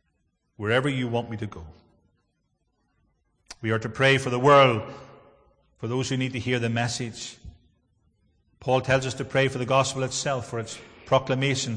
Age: 40-59